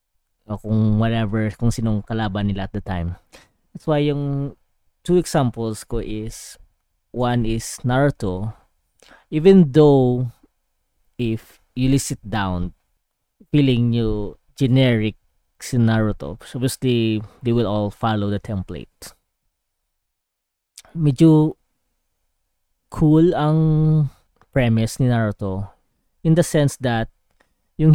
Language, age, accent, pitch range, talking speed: Filipino, 20-39, native, 105-135 Hz, 105 wpm